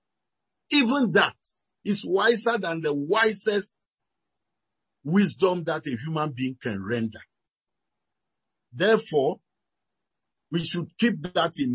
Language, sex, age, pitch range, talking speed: English, male, 50-69, 145-220 Hz, 100 wpm